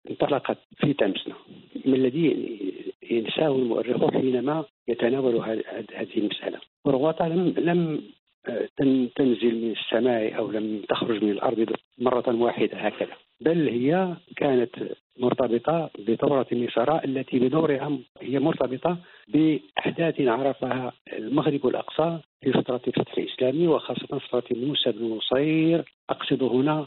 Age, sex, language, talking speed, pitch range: 50-69, male, Arabic, 115 wpm, 115-145 Hz